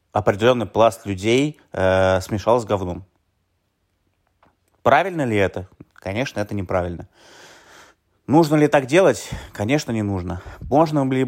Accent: native